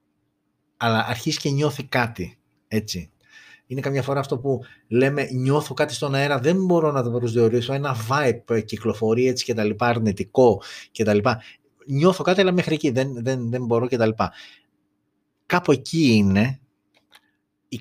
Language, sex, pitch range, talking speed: Greek, male, 110-145 Hz, 155 wpm